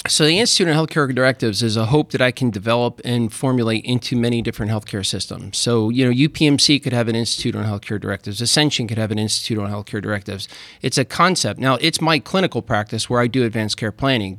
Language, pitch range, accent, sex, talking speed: English, 115-135 Hz, American, male, 220 wpm